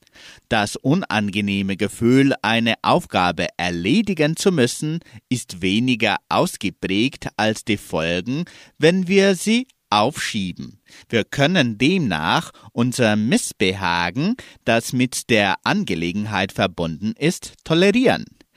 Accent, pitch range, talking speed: German, 105-160 Hz, 95 wpm